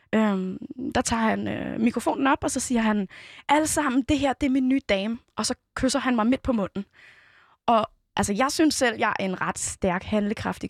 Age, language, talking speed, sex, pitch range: 20-39, Danish, 210 wpm, female, 210-275 Hz